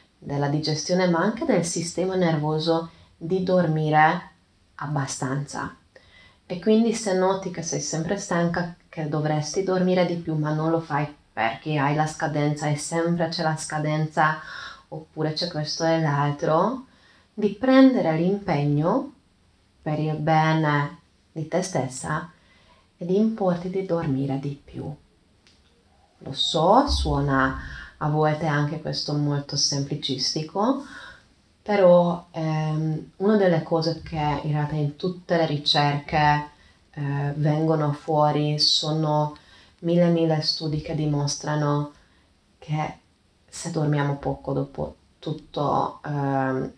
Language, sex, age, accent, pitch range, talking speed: Italian, female, 20-39, native, 145-175 Hz, 120 wpm